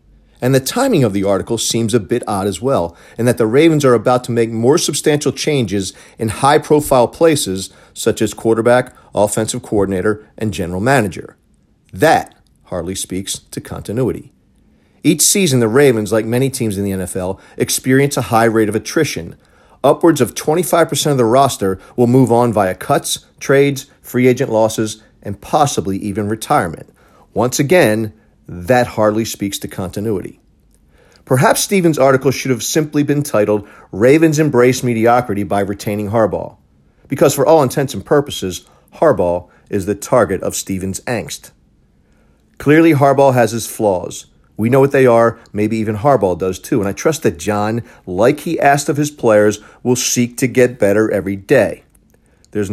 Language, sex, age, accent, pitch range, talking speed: English, male, 40-59, American, 100-130 Hz, 160 wpm